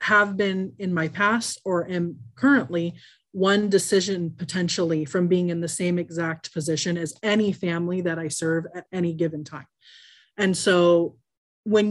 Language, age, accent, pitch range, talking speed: English, 30-49, American, 160-195 Hz, 155 wpm